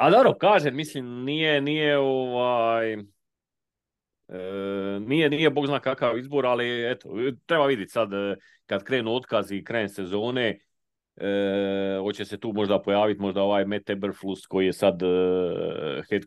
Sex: male